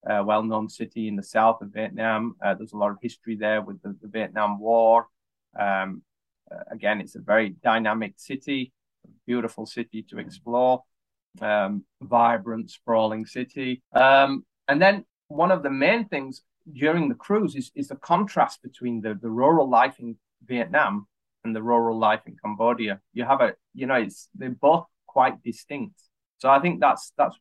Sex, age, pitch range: male, 20-39, 110-130 Hz